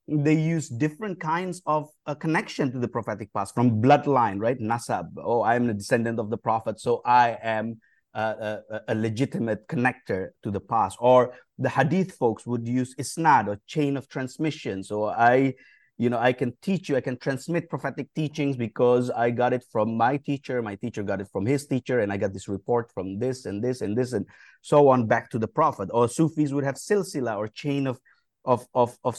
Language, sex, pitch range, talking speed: English, male, 125-155 Hz, 200 wpm